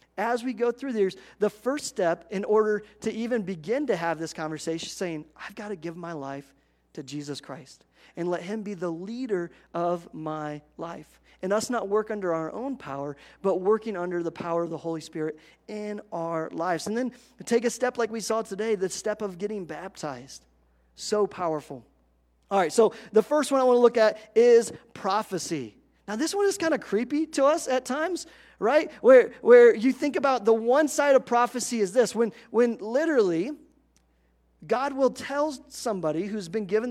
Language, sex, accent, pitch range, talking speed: English, male, American, 175-235 Hz, 195 wpm